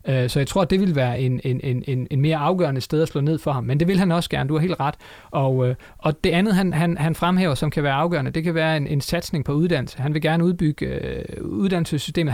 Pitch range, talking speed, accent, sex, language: 135-170 Hz, 265 wpm, native, male, Danish